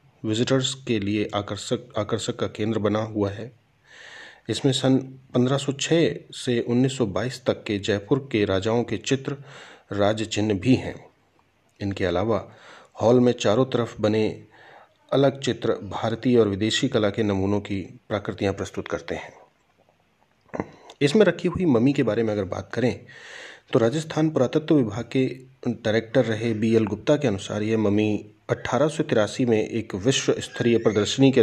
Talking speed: 145 wpm